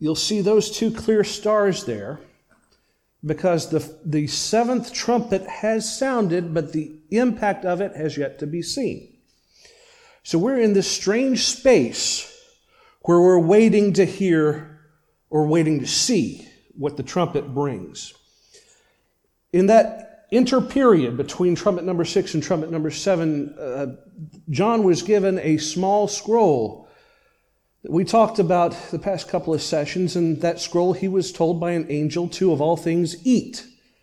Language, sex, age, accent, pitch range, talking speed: English, male, 40-59, American, 165-225 Hz, 145 wpm